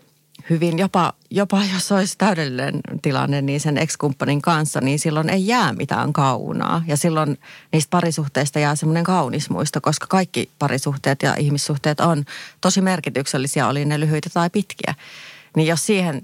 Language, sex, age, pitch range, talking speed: Finnish, female, 30-49, 140-165 Hz, 150 wpm